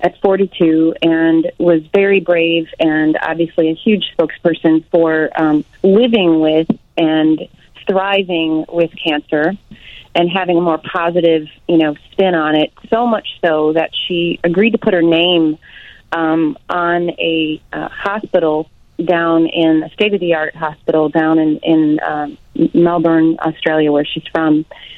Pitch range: 155-175 Hz